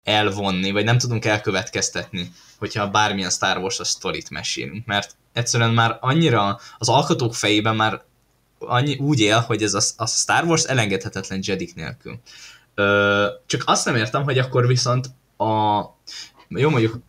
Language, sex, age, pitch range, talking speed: Hungarian, male, 10-29, 100-120 Hz, 140 wpm